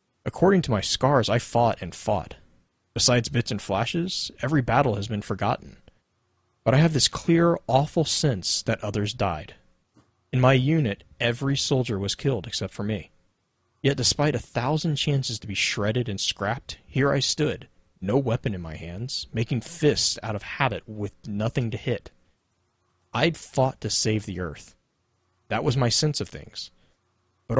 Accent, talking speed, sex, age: American, 165 wpm, male, 30-49